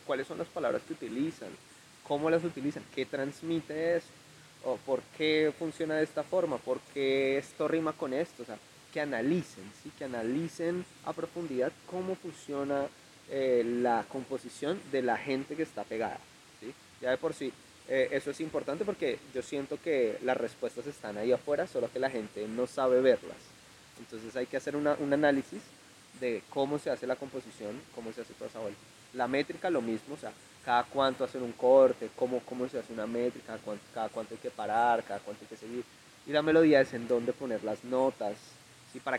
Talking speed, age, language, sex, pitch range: 190 wpm, 20-39, Spanish, male, 125-155 Hz